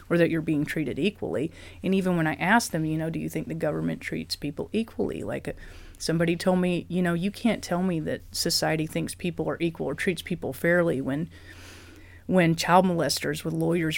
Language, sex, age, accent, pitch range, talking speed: English, female, 30-49, American, 160-185 Hz, 205 wpm